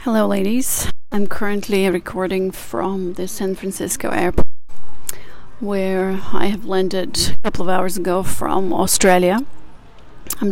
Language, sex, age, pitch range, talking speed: English, female, 30-49, 190-210 Hz, 125 wpm